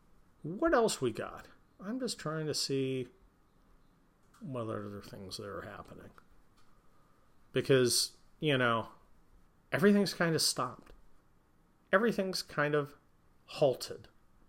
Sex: male